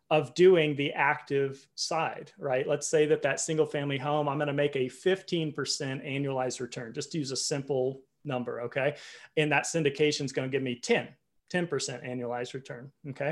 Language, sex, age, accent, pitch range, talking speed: English, male, 30-49, American, 140-165 Hz, 175 wpm